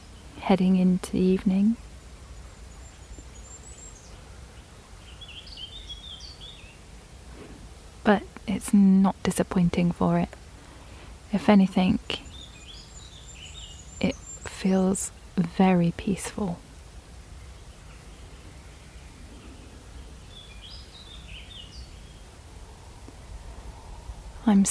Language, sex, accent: English, female, British